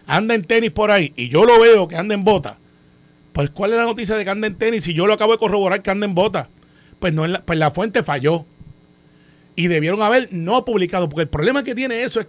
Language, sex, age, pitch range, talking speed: Spanish, male, 30-49, 155-220 Hz, 250 wpm